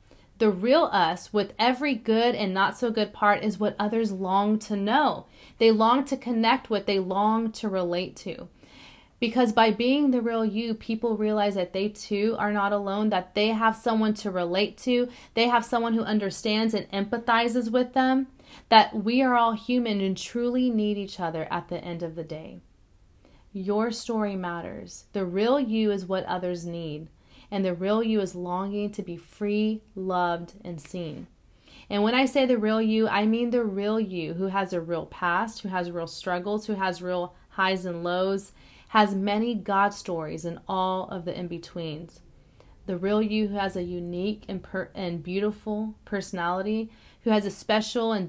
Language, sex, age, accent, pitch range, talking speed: English, female, 30-49, American, 185-225 Hz, 185 wpm